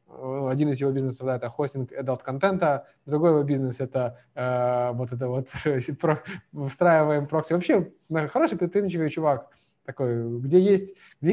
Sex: male